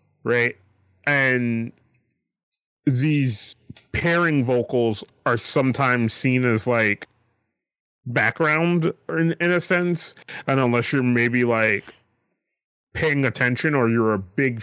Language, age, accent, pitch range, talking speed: English, 30-49, American, 115-150 Hz, 105 wpm